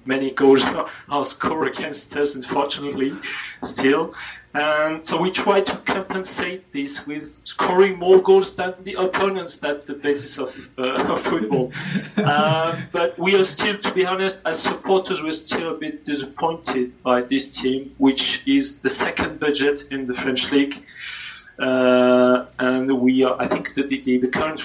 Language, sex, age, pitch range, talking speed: English, male, 40-59, 125-150 Hz, 165 wpm